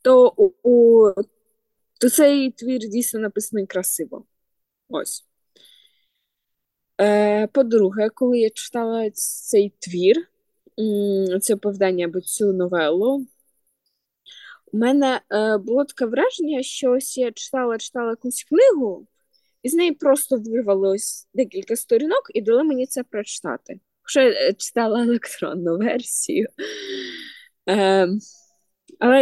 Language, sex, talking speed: Ukrainian, female, 110 wpm